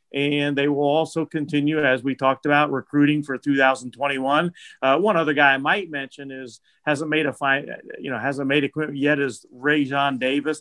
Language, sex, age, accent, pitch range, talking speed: English, male, 40-59, American, 135-155 Hz, 185 wpm